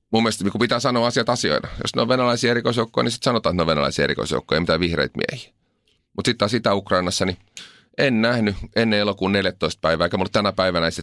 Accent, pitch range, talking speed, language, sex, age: native, 80-110 Hz, 205 wpm, Finnish, male, 30-49